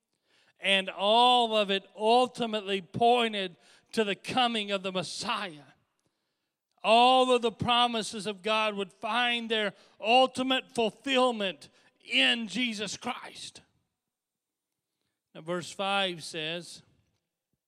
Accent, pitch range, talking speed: American, 150-195 Hz, 100 wpm